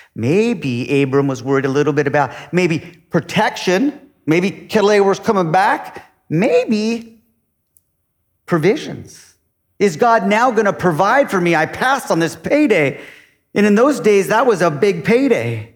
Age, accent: 40-59, American